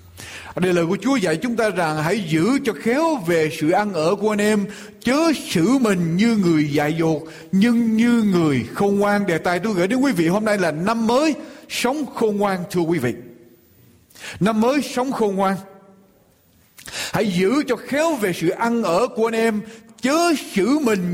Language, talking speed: Vietnamese, 195 wpm